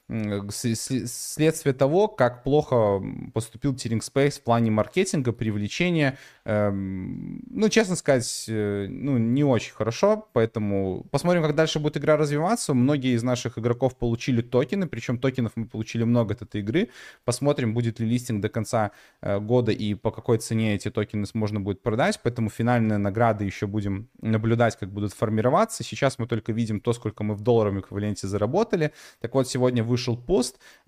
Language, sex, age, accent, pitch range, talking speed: Russian, male, 20-39, native, 110-135 Hz, 155 wpm